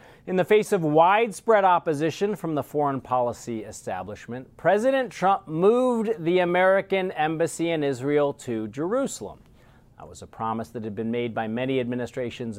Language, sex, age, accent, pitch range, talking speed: English, male, 40-59, American, 120-185 Hz, 155 wpm